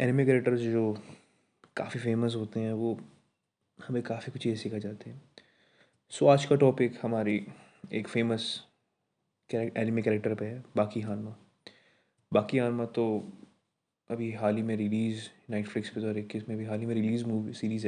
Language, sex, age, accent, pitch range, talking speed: Hindi, male, 20-39, native, 105-120 Hz, 165 wpm